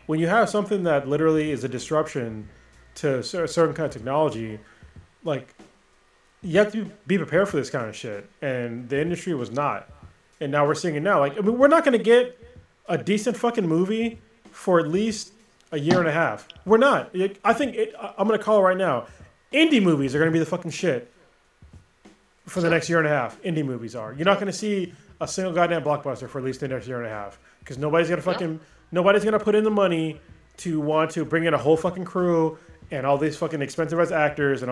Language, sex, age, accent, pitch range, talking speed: English, male, 20-39, American, 135-185 Hz, 230 wpm